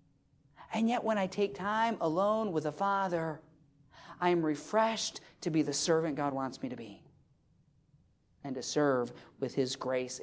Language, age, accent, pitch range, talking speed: English, 40-59, American, 145-195 Hz, 165 wpm